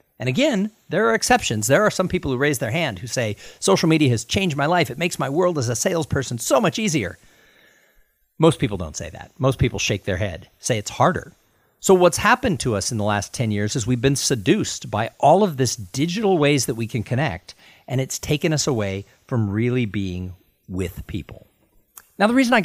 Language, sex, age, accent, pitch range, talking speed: English, male, 50-69, American, 110-170 Hz, 215 wpm